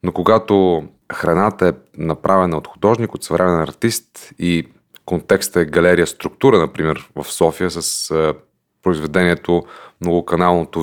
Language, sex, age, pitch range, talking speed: Bulgarian, male, 30-49, 85-125 Hz, 120 wpm